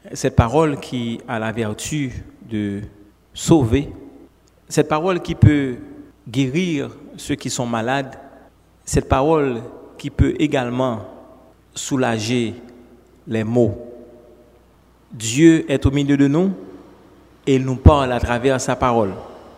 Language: French